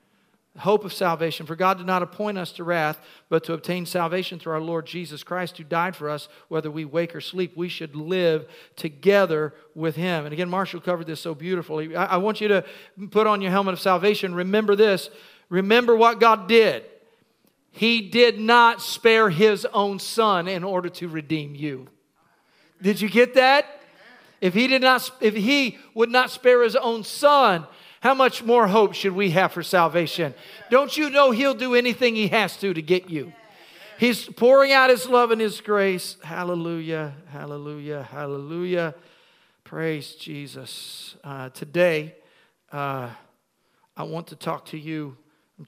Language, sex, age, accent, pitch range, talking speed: English, male, 40-59, American, 160-215 Hz, 165 wpm